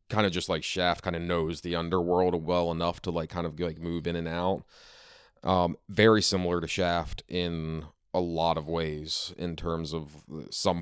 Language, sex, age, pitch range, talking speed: English, male, 30-49, 80-90 Hz, 195 wpm